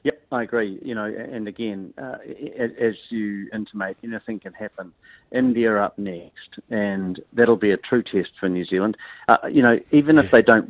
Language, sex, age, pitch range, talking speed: English, male, 50-69, 100-120 Hz, 190 wpm